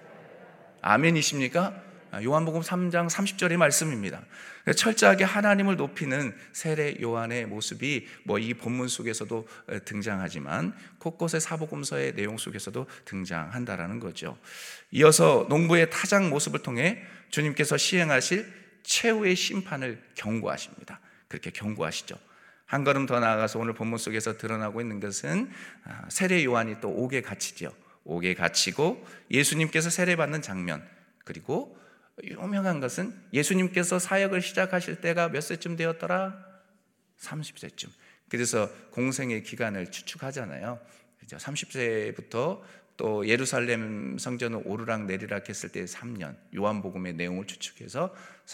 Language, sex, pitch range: Korean, male, 105-175 Hz